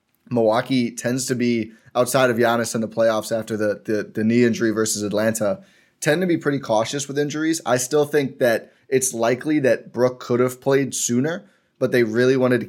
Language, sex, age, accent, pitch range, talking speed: English, male, 20-39, American, 115-140 Hz, 200 wpm